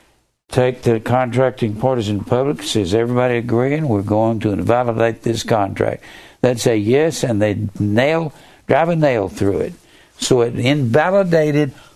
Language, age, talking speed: English, 60-79, 140 wpm